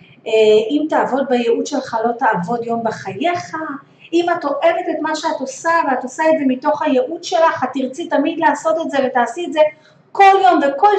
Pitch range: 230-300 Hz